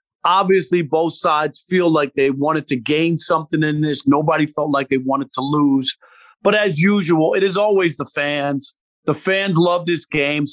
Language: English